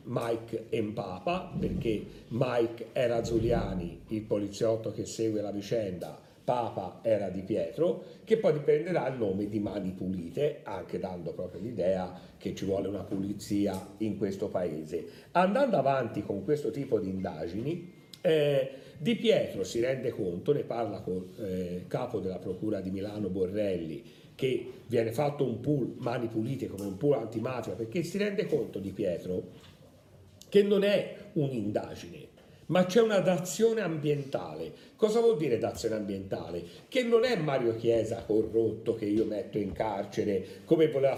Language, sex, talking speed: Italian, male, 155 wpm